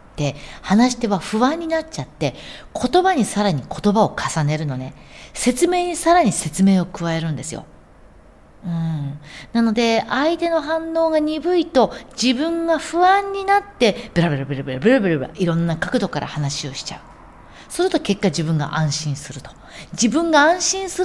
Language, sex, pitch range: Japanese, female, 145-240 Hz